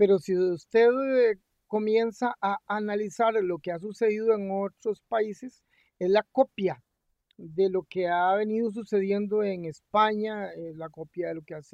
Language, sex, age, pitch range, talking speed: Spanish, male, 50-69, 175-230 Hz, 165 wpm